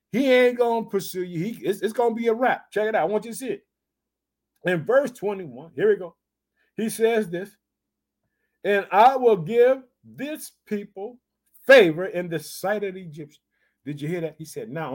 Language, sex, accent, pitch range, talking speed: English, male, American, 155-225 Hz, 200 wpm